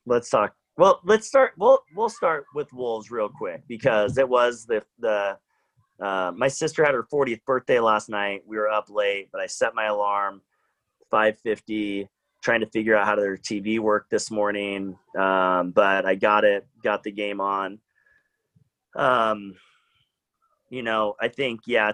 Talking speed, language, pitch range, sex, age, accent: 165 wpm, English, 100-120 Hz, male, 30-49, American